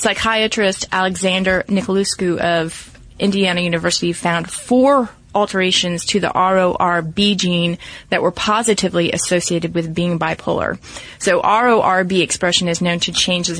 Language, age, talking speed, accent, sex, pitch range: English, 30-49, 125 wpm, American, female, 170-200 Hz